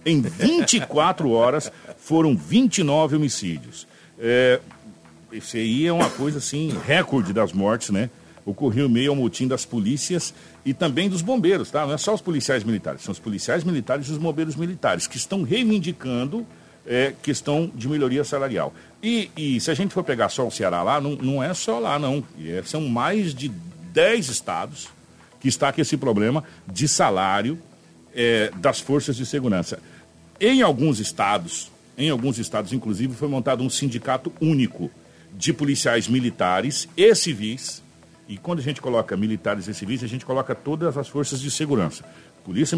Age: 60-79